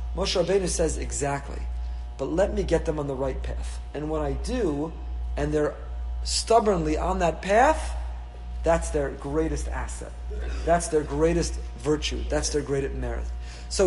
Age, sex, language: 40-59, male, English